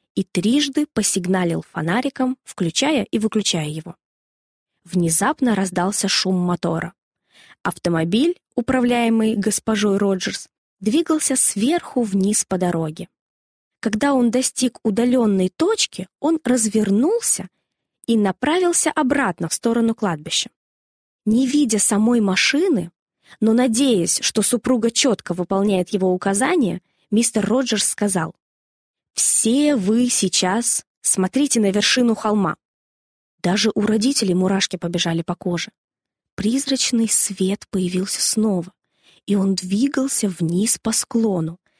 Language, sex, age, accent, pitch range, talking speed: Russian, female, 20-39, native, 180-245 Hz, 105 wpm